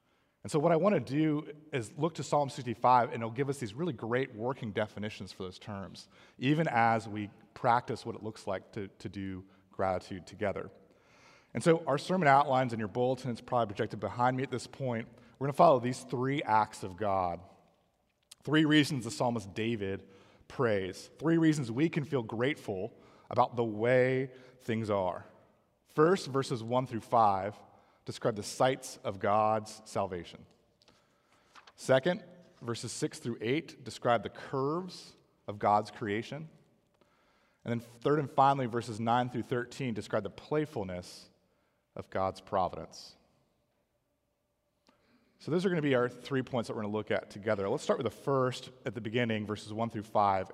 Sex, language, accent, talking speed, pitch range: male, English, American, 170 wpm, 105-140 Hz